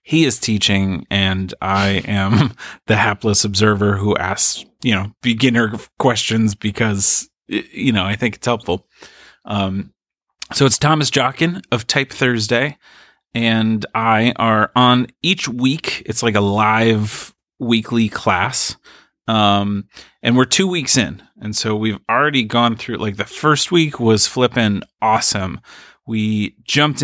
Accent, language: American, English